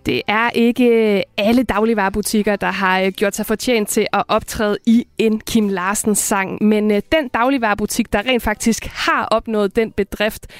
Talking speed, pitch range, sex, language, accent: 160 wpm, 200-230 Hz, female, Danish, native